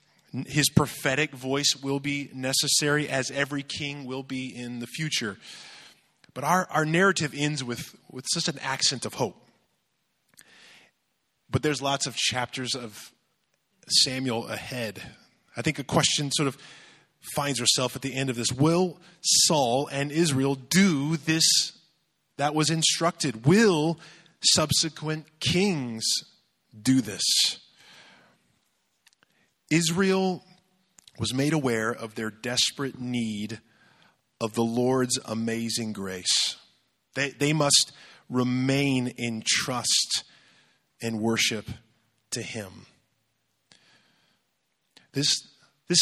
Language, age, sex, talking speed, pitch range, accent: English, 20-39, male, 110 wpm, 115-150 Hz, American